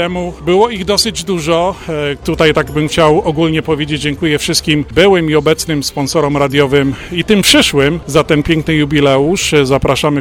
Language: Polish